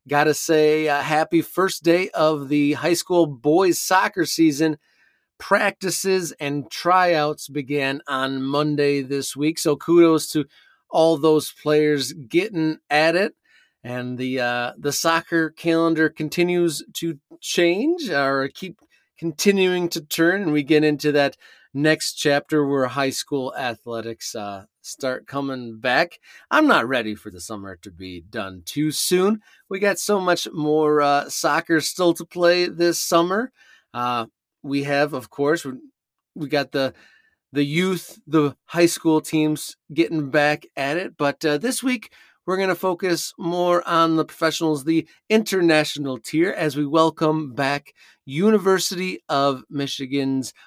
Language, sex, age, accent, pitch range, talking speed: English, male, 30-49, American, 140-175 Hz, 145 wpm